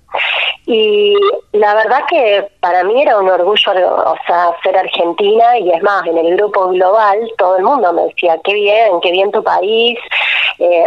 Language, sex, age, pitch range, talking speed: Spanish, female, 20-39, 185-245 Hz, 175 wpm